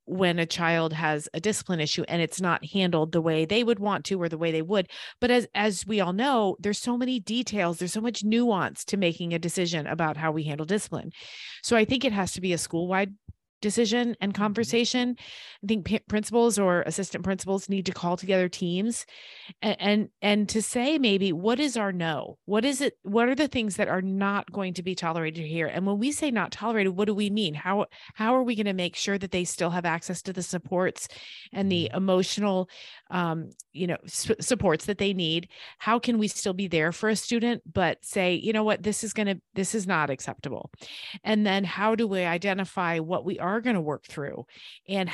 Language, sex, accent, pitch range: English, female, American, 175-215 Hz